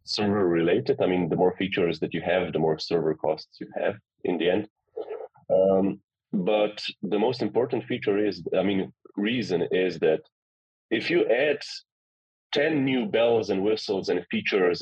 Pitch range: 90-135 Hz